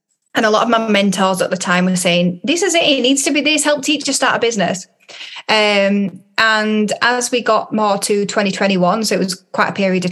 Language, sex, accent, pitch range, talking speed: English, female, British, 185-225 Hz, 230 wpm